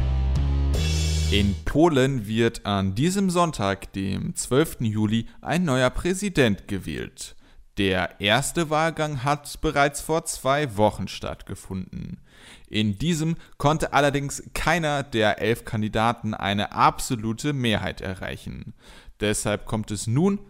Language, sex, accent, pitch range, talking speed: German, male, German, 100-145 Hz, 110 wpm